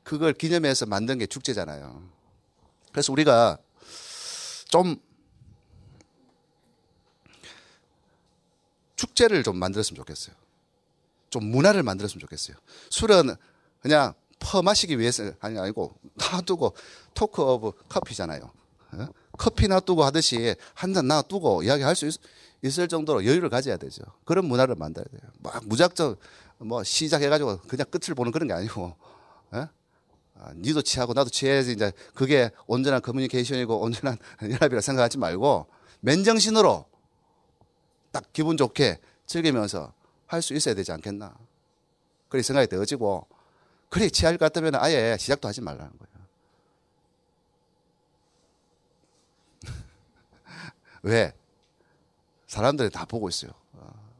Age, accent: 40-59, native